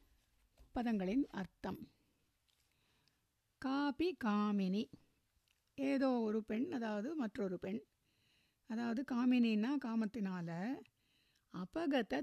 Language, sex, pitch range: Tamil, female, 200-260 Hz